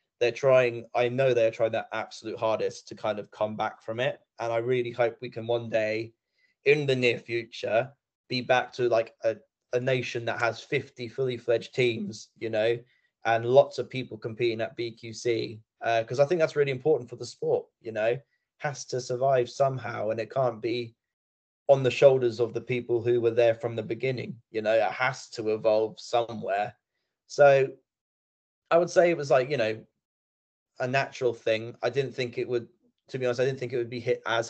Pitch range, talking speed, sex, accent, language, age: 115-125 Hz, 205 wpm, male, British, English, 20-39